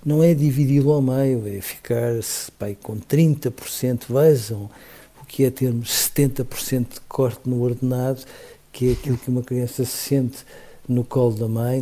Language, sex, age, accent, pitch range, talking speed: Portuguese, male, 50-69, Portuguese, 125-145 Hz, 155 wpm